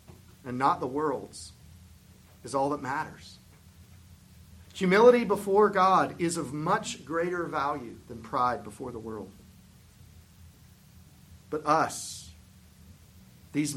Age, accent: 50-69, American